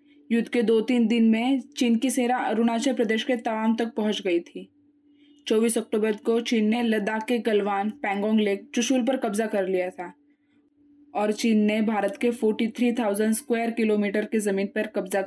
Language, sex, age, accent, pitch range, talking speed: English, female, 20-39, Indian, 215-255 Hz, 175 wpm